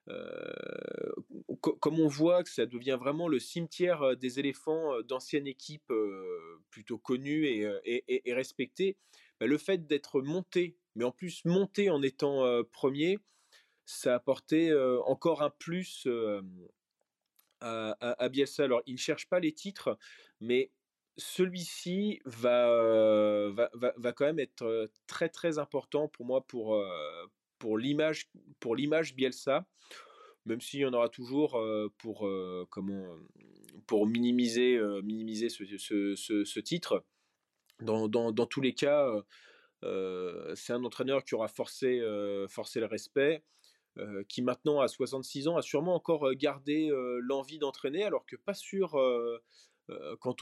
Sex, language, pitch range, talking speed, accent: male, French, 120-170 Hz, 145 wpm, French